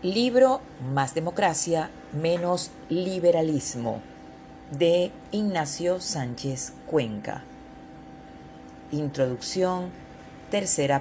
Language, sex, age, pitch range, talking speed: Spanish, female, 40-59, 110-180 Hz, 60 wpm